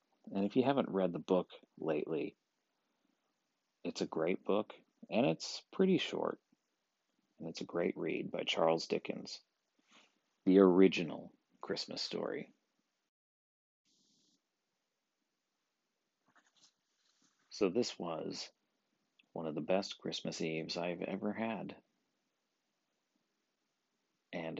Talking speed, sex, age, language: 100 wpm, male, 40-59, English